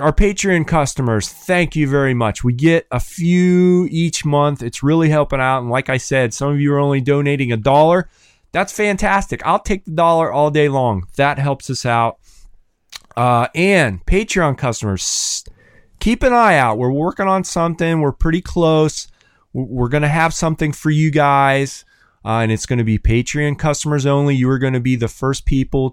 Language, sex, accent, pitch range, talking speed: English, male, American, 110-150 Hz, 185 wpm